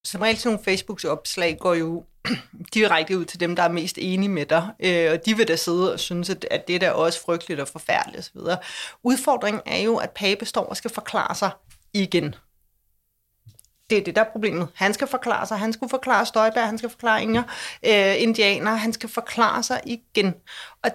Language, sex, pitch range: Danish, female, 190-235 Hz